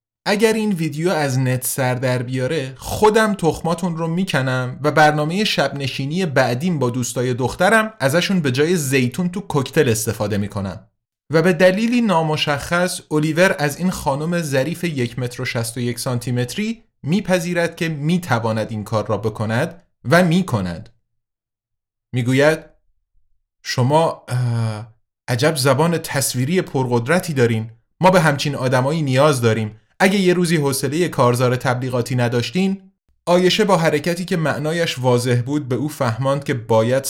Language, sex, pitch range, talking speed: Persian, male, 120-175 Hz, 135 wpm